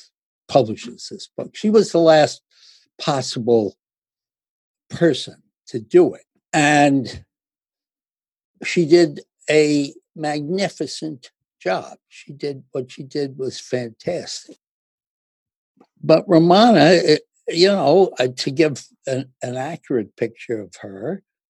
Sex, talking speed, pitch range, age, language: male, 105 wpm, 125-160 Hz, 60-79, English